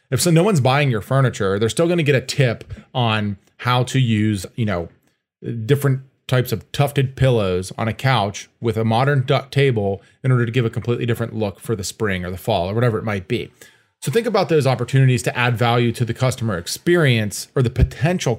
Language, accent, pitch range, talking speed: English, American, 110-135 Hz, 220 wpm